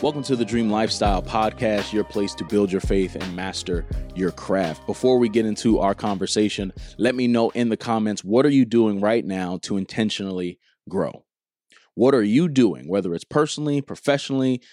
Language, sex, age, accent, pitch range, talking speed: English, male, 20-39, American, 95-130 Hz, 185 wpm